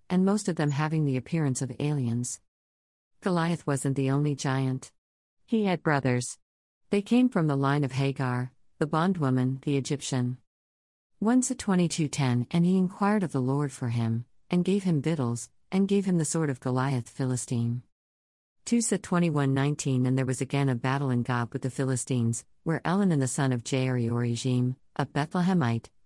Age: 50-69